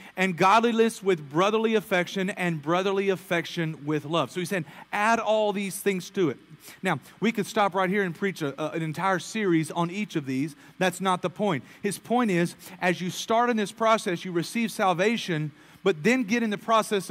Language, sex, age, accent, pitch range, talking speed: English, male, 40-59, American, 160-210 Hz, 205 wpm